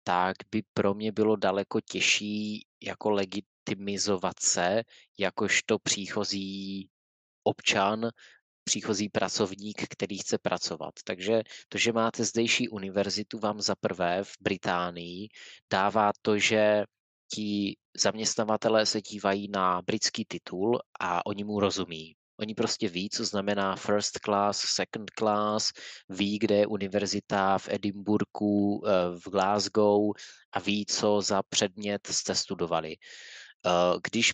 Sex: male